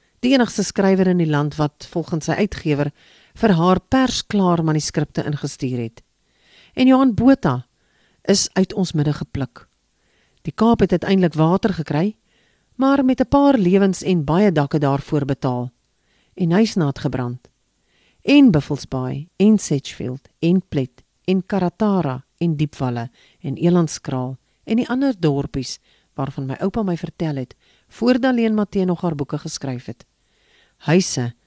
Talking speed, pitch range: 140 wpm, 135-195 Hz